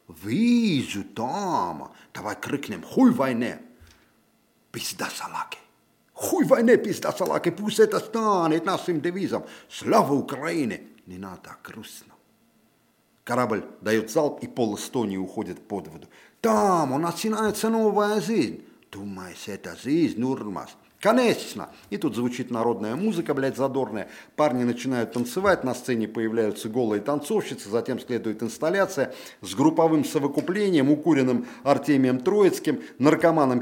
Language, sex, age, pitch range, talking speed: Russian, male, 50-69, 120-165 Hz, 120 wpm